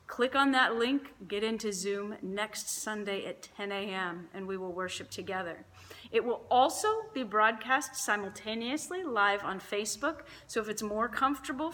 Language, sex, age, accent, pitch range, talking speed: English, female, 30-49, American, 200-275 Hz, 160 wpm